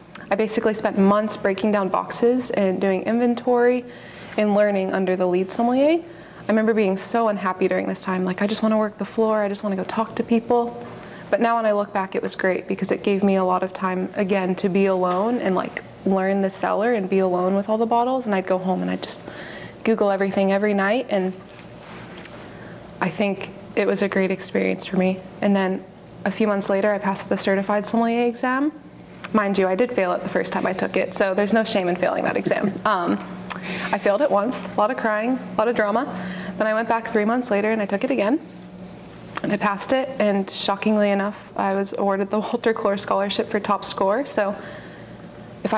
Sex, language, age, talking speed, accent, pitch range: female, English, 20-39, 225 wpm, American, 195-225 Hz